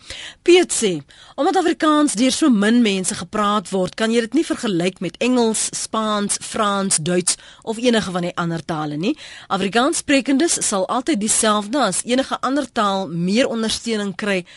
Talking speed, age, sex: 155 wpm, 30-49, female